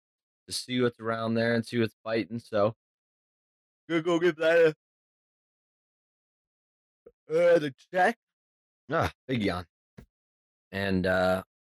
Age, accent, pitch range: 20-39, American, 90-120 Hz